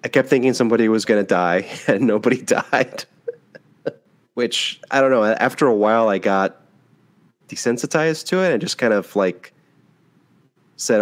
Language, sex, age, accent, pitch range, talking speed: English, male, 30-49, American, 90-115 Hz, 160 wpm